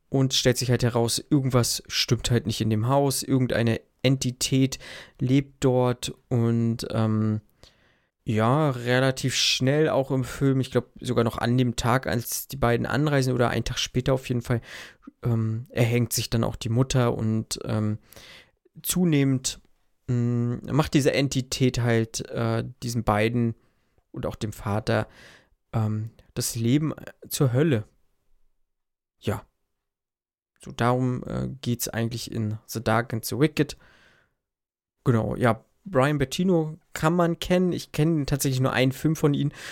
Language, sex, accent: German, male, German